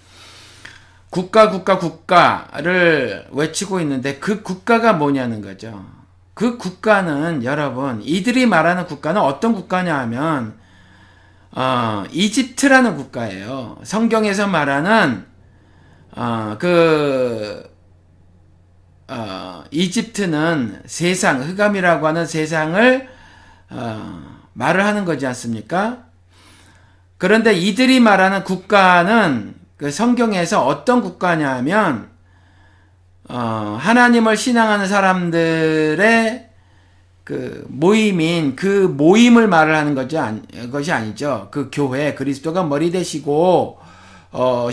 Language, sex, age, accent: Korean, male, 50-69, native